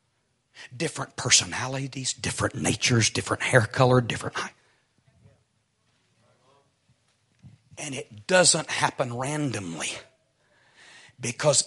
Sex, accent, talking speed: male, American, 75 wpm